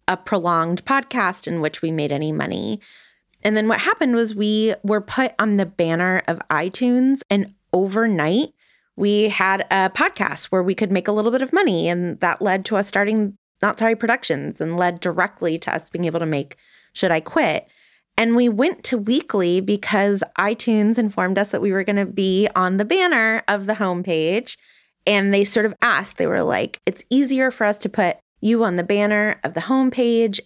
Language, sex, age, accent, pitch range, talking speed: English, female, 20-39, American, 185-235 Hz, 195 wpm